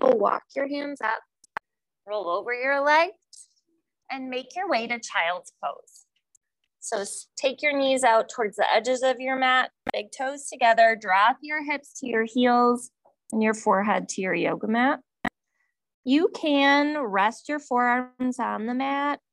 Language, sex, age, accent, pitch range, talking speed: English, female, 20-39, American, 215-280 Hz, 155 wpm